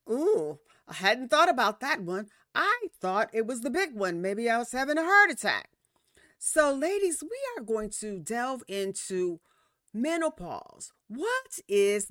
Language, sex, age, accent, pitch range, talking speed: English, female, 40-59, American, 185-290 Hz, 160 wpm